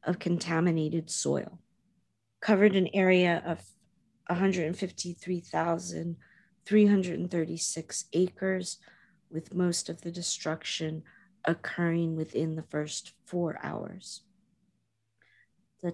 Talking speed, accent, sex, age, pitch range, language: 80 wpm, American, female, 40-59, 165-195 Hz, English